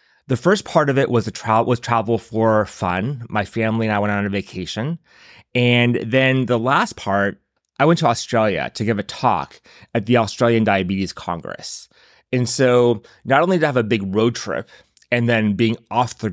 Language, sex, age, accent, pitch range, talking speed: English, male, 30-49, American, 100-130 Hz, 195 wpm